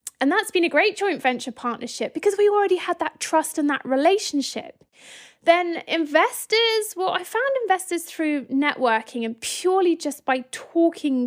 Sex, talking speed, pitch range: female, 160 wpm, 250-315 Hz